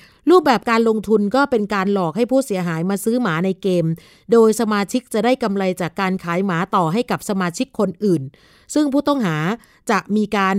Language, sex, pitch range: Thai, female, 185-240 Hz